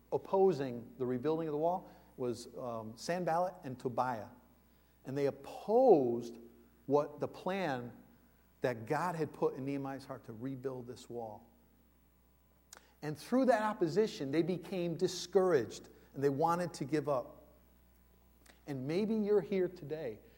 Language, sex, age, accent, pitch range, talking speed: English, male, 40-59, American, 115-170 Hz, 135 wpm